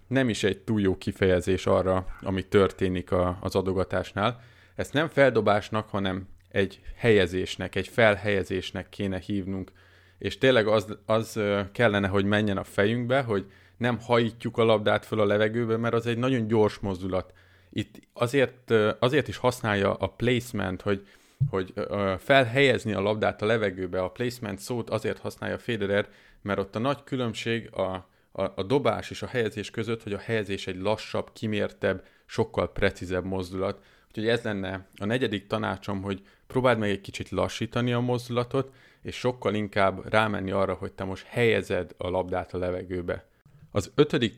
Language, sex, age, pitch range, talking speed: Hungarian, male, 30-49, 95-115 Hz, 155 wpm